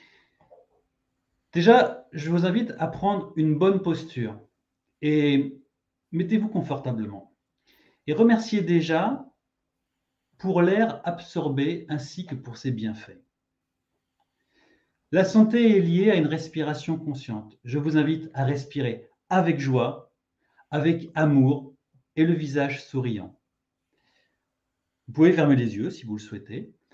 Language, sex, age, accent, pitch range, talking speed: French, male, 40-59, French, 130-180 Hz, 120 wpm